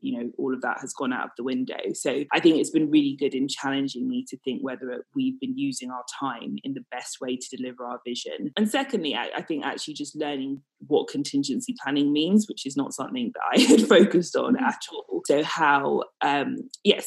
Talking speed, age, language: 225 wpm, 20-39, English